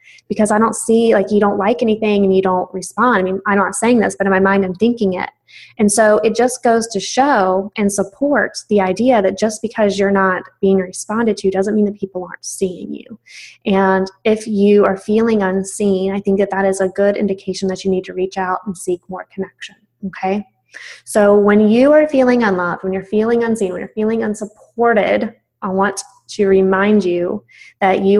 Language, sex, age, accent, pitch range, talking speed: English, female, 20-39, American, 190-215 Hz, 210 wpm